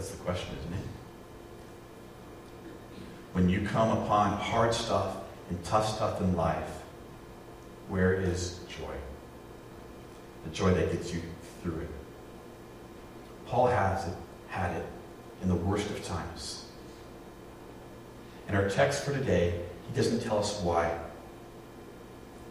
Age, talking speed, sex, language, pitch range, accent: 40-59, 125 wpm, male, English, 90-115 Hz, American